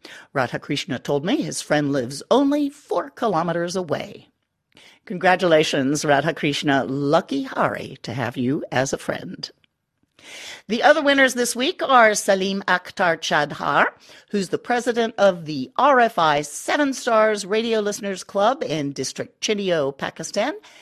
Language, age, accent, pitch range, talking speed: English, 50-69, American, 160-245 Hz, 125 wpm